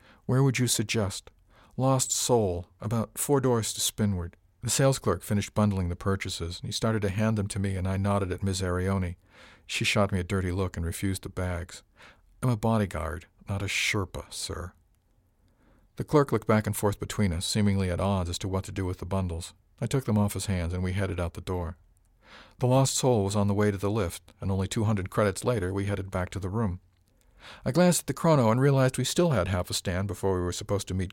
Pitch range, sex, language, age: 95-110 Hz, male, English, 50-69